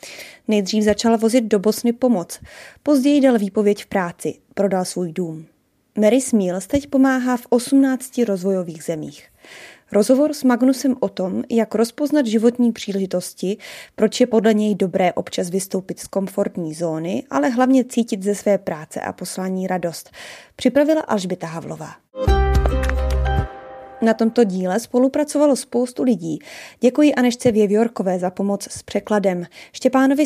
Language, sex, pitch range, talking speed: Czech, female, 190-250 Hz, 135 wpm